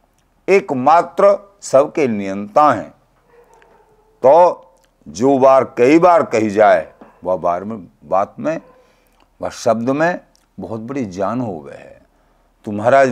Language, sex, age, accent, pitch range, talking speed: Hindi, male, 50-69, native, 100-140 Hz, 120 wpm